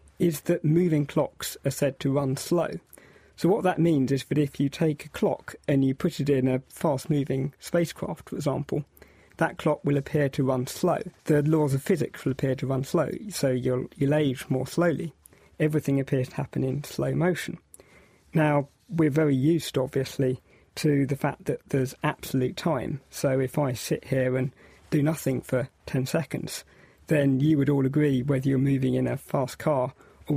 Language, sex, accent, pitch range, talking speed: English, male, British, 135-155 Hz, 190 wpm